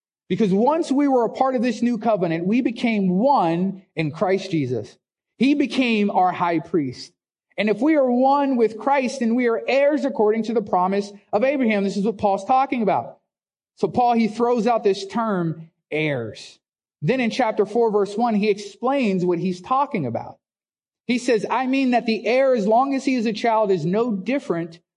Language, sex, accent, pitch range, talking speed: English, male, American, 185-250 Hz, 195 wpm